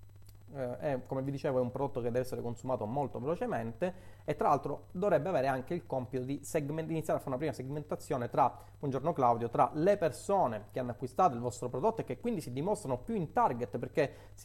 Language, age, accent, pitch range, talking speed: Italian, 30-49, native, 115-150 Hz, 210 wpm